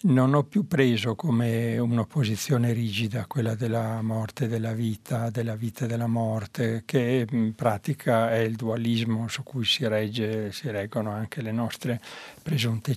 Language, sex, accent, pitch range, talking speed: Italian, male, native, 115-130 Hz, 155 wpm